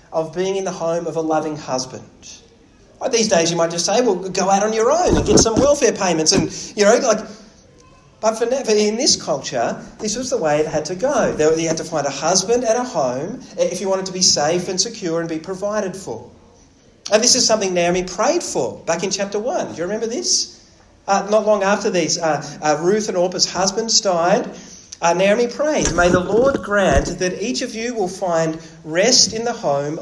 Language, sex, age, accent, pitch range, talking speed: English, male, 30-49, Australian, 170-215 Hz, 220 wpm